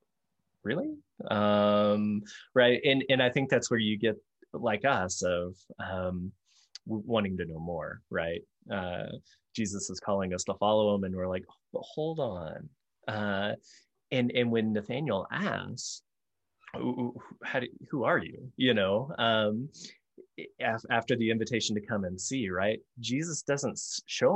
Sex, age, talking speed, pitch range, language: male, 20-39, 150 wpm, 95-120 Hz, English